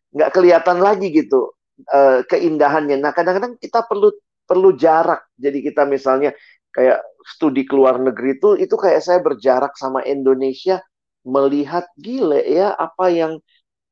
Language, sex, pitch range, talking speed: Indonesian, male, 135-205 Hz, 130 wpm